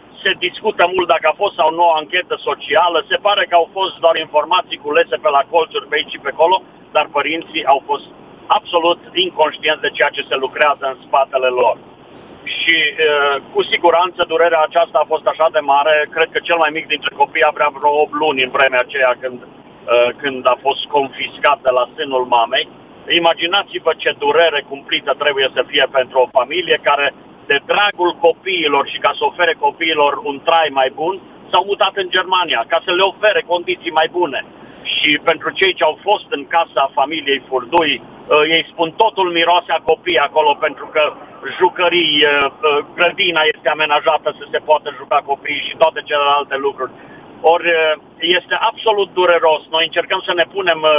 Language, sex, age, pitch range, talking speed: Romanian, male, 50-69, 145-180 Hz, 175 wpm